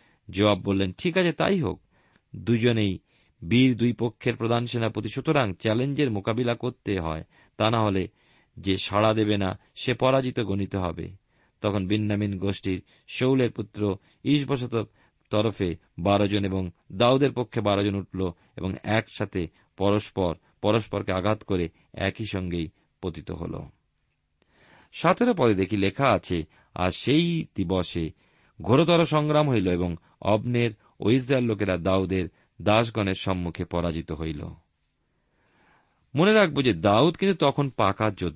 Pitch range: 95-125 Hz